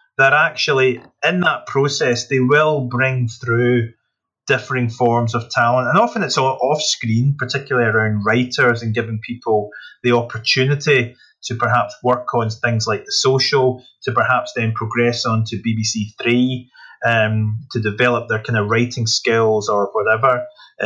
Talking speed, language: 150 wpm, English